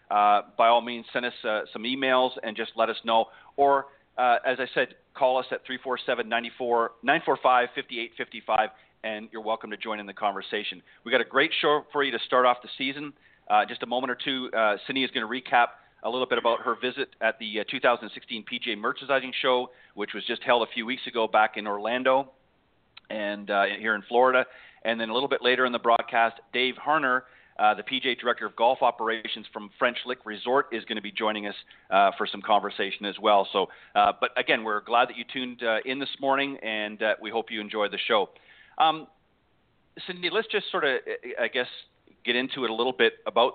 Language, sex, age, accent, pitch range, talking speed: English, male, 40-59, American, 110-130 Hz, 210 wpm